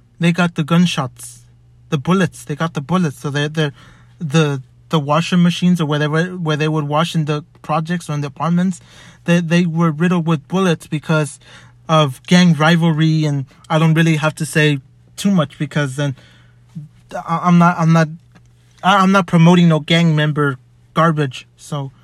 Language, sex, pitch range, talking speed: English, male, 145-170 Hz, 170 wpm